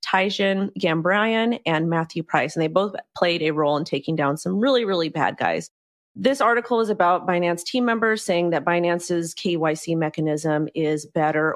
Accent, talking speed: American, 170 wpm